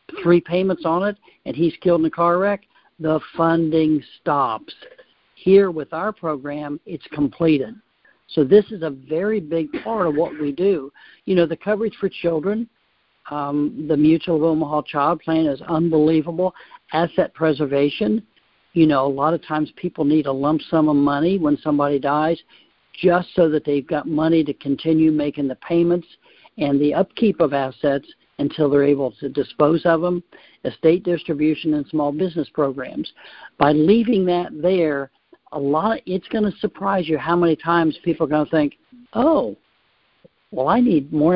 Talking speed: 170 wpm